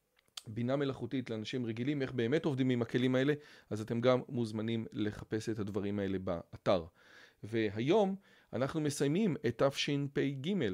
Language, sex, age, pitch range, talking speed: Hebrew, male, 40-59, 110-145 Hz, 135 wpm